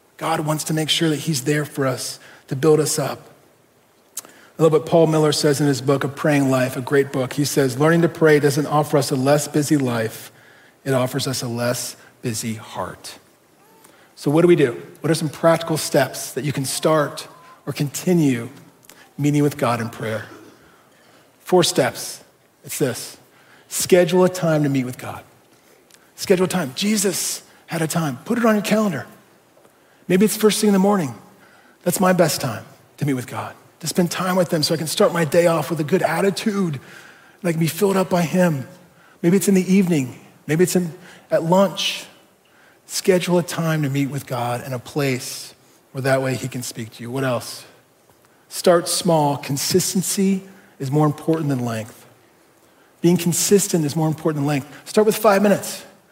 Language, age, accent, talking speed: English, 40-59, American, 190 wpm